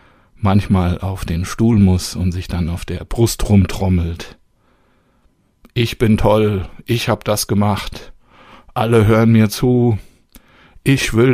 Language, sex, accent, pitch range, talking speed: German, male, German, 90-115 Hz, 130 wpm